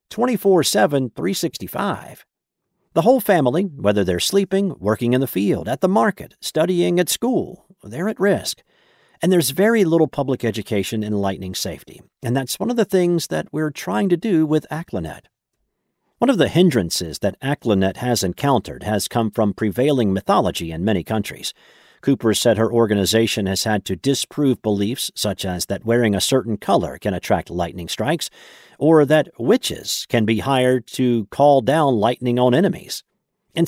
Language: English